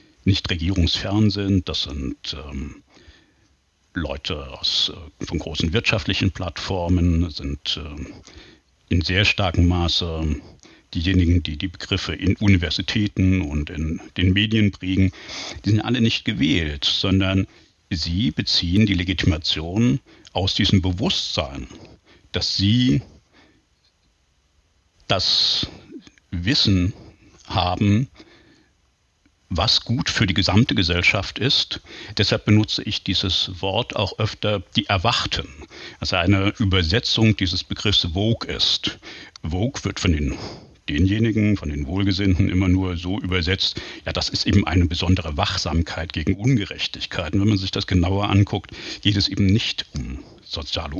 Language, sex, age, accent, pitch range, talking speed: German, male, 60-79, German, 85-100 Hz, 120 wpm